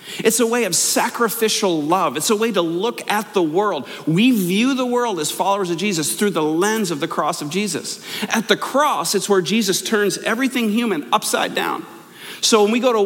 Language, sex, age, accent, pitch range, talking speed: English, male, 40-59, American, 180-225 Hz, 210 wpm